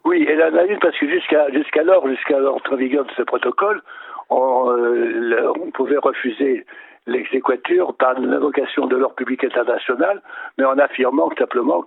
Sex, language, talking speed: male, French, 135 wpm